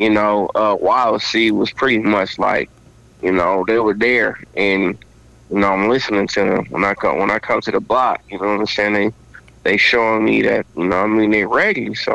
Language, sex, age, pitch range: English, male, 20-39, 105-115 Hz